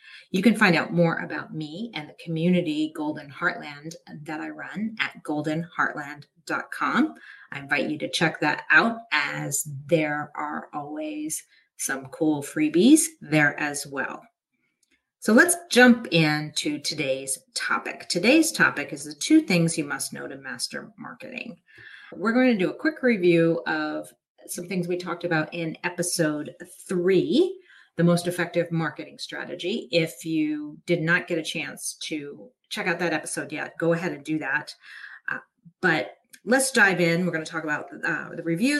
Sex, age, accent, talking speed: female, 40-59, American, 160 wpm